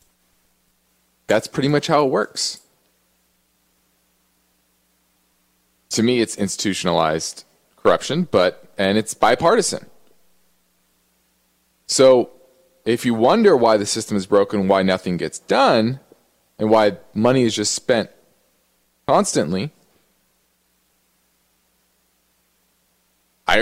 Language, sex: English, male